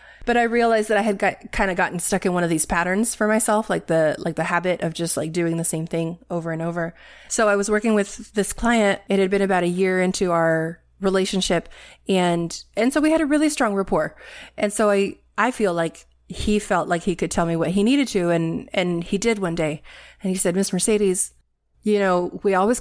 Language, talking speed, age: English, 235 wpm, 30-49